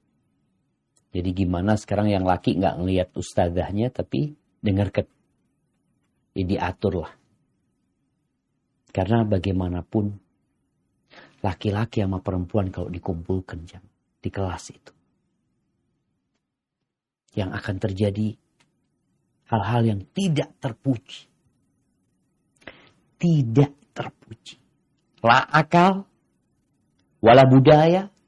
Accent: native